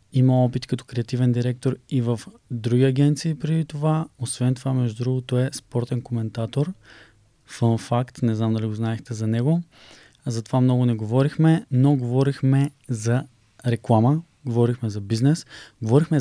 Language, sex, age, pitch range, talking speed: Bulgarian, male, 20-39, 115-130 Hz, 150 wpm